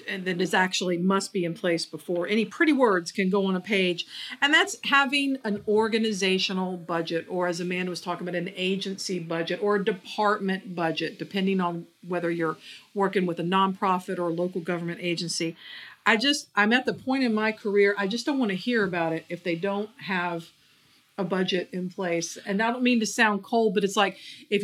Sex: female